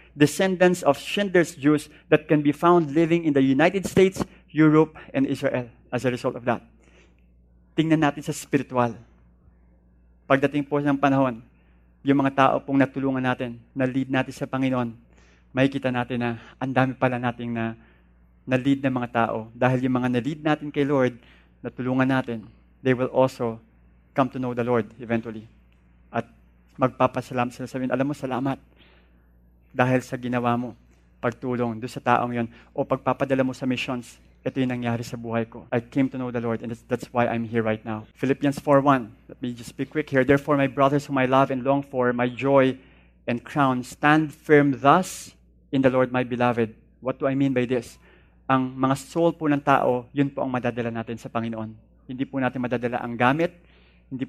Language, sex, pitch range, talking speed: English, male, 115-135 Hz, 185 wpm